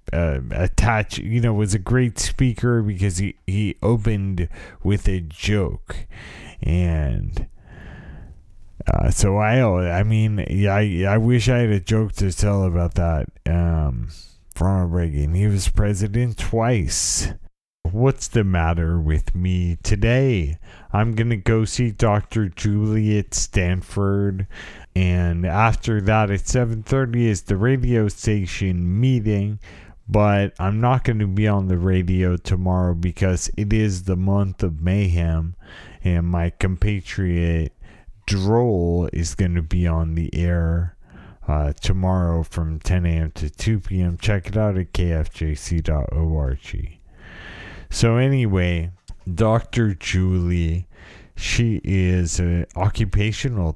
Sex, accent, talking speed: male, American, 125 wpm